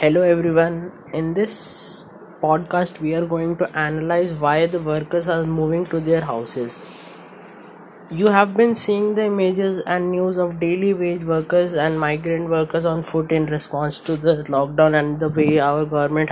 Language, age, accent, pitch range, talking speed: Hindi, 20-39, native, 160-190 Hz, 165 wpm